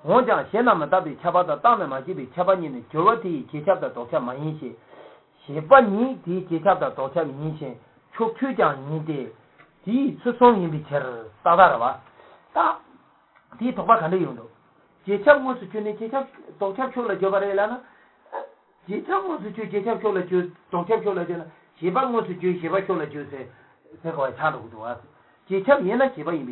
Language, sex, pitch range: English, male, 145-225 Hz